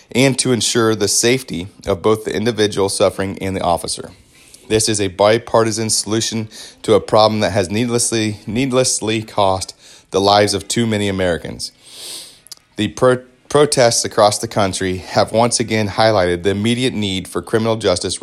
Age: 30-49